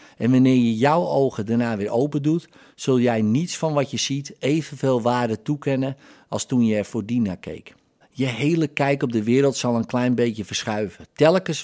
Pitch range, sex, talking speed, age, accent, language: 110-145 Hz, male, 195 wpm, 50-69, Dutch, Dutch